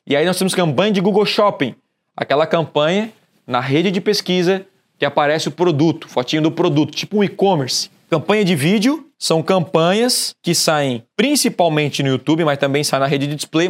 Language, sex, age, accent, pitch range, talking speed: Portuguese, male, 20-39, Brazilian, 160-210 Hz, 180 wpm